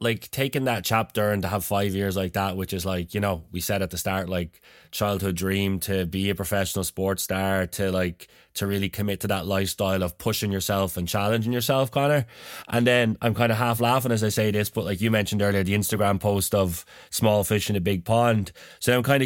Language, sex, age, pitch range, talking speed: English, male, 20-39, 95-115 Hz, 230 wpm